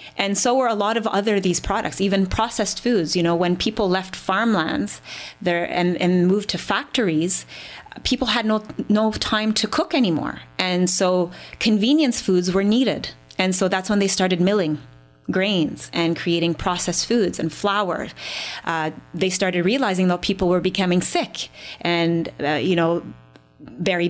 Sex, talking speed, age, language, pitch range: female, 165 wpm, 30-49, English, 180-220 Hz